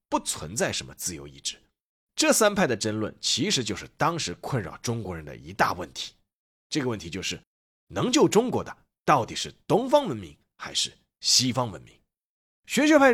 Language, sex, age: Chinese, male, 30-49